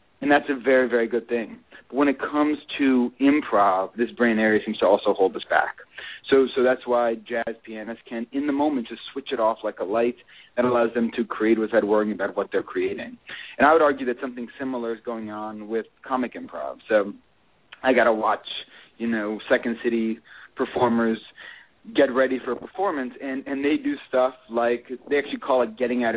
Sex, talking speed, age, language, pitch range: male, 205 wpm, 30-49, English, 115-135 Hz